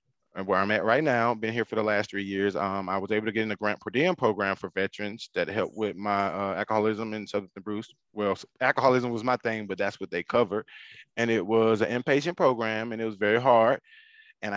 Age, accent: 30-49, American